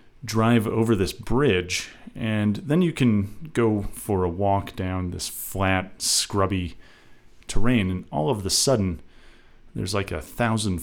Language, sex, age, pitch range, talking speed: English, male, 40-59, 90-115 Hz, 150 wpm